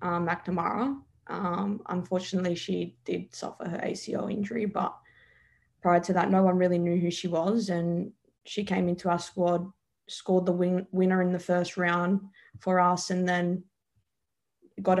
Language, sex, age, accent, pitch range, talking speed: English, female, 20-39, Australian, 175-195 Hz, 155 wpm